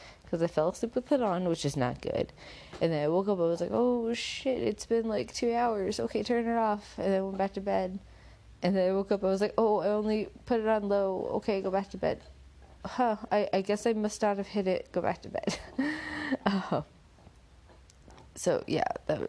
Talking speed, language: 230 wpm, English